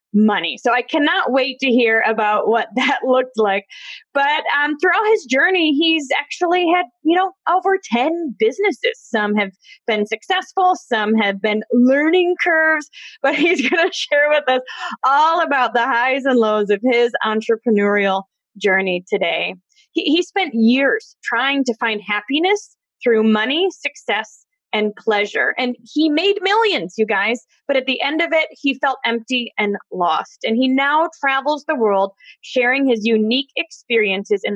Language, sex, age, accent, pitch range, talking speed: English, female, 20-39, American, 225-325 Hz, 160 wpm